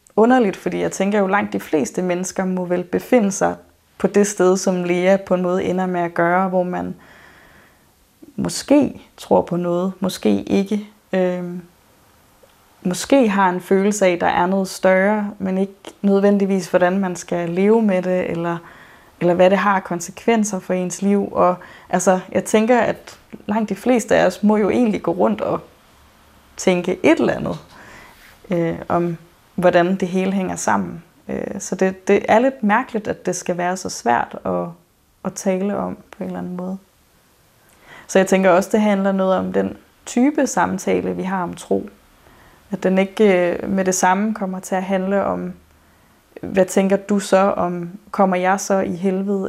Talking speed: 175 wpm